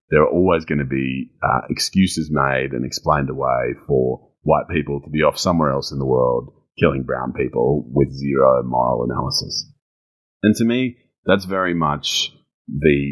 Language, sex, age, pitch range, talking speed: English, male, 30-49, 70-95 Hz, 170 wpm